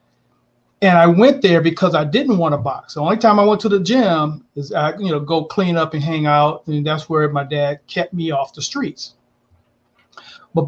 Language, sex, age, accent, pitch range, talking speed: English, male, 40-59, American, 145-175 Hz, 220 wpm